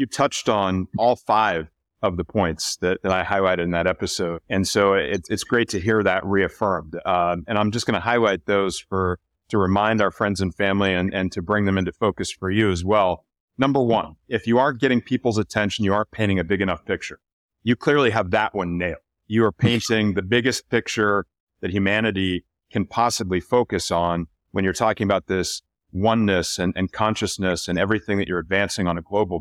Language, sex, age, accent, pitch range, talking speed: English, male, 40-59, American, 95-120 Hz, 200 wpm